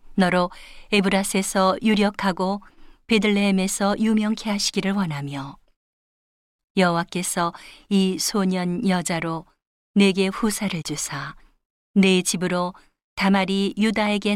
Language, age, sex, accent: Korean, 40-59, female, native